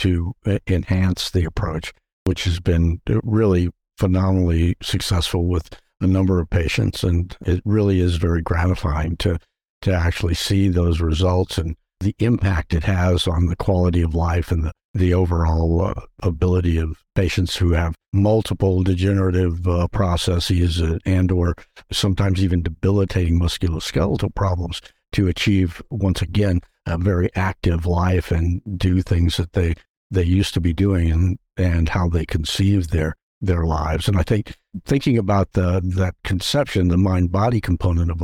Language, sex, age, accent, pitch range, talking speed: English, male, 60-79, American, 85-100 Hz, 150 wpm